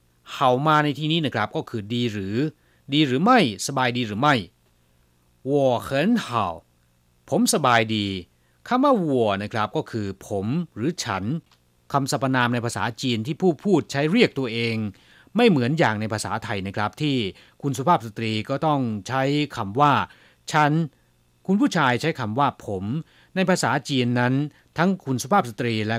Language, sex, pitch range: Chinese, male, 105-150 Hz